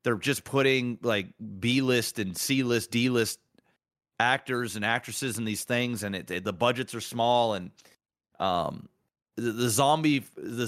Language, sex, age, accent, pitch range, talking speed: English, male, 30-49, American, 115-140 Hz, 155 wpm